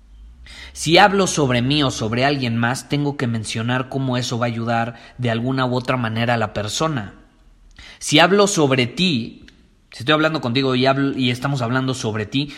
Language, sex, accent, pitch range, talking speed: Spanish, male, Mexican, 115-150 Hz, 180 wpm